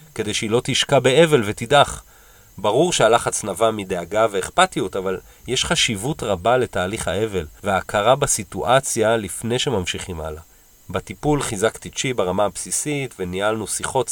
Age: 40-59